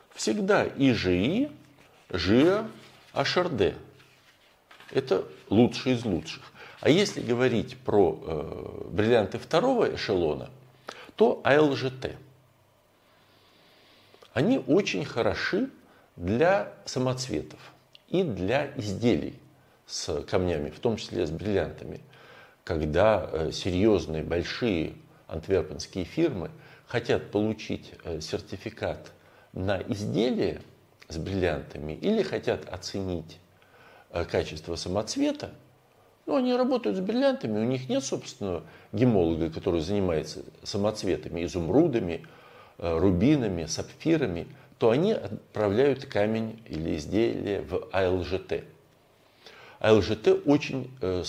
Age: 50-69